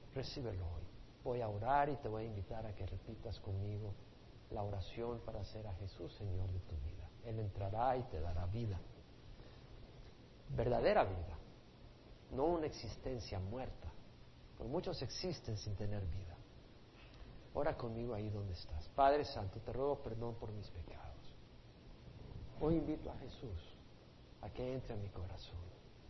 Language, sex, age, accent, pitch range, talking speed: Spanish, male, 50-69, Mexican, 95-120 Hz, 150 wpm